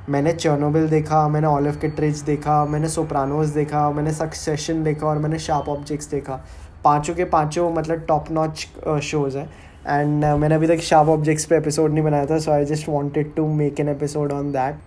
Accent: Indian